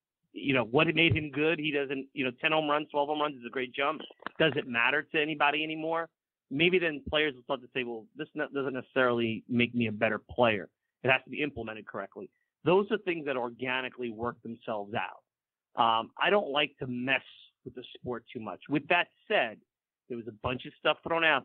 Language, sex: English, male